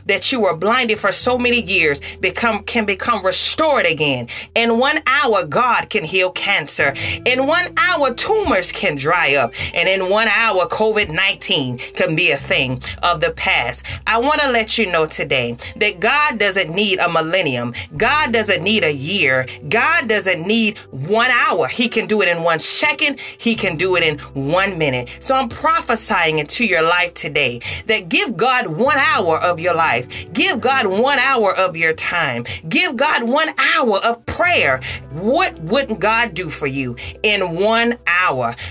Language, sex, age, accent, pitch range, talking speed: English, female, 30-49, American, 165-235 Hz, 175 wpm